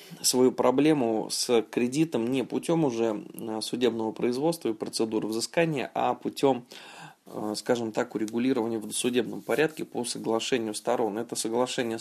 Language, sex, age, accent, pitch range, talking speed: Russian, male, 20-39, native, 110-130 Hz, 125 wpm